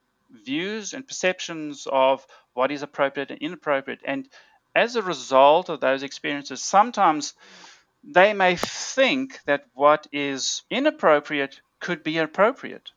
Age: 40-59